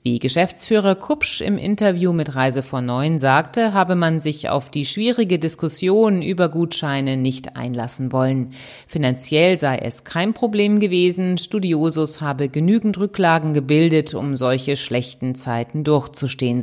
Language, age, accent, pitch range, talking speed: German, 30-49, German, 140-200 Hz, 135 wpm